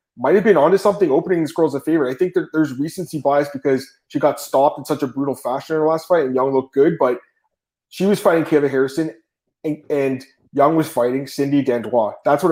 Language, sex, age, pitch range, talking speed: English, male, 20-39, 130-170 Hz, 220 wpm